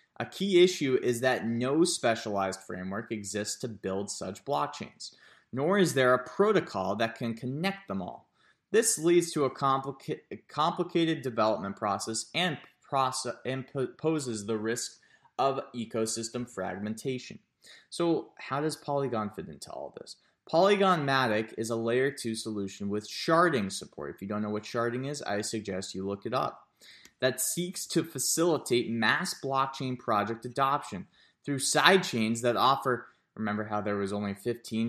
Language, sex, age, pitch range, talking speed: English, male, 30-49, 110-145 Hz, 160 wpm